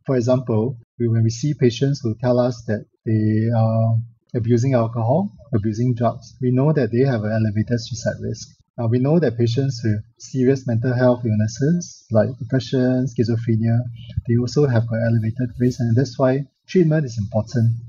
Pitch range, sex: 115-135 Hz, male